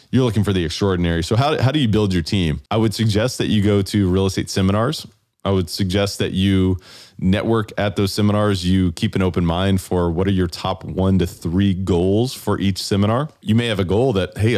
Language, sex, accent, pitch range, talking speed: English, male, American, 95-110 Hz, 230 wpm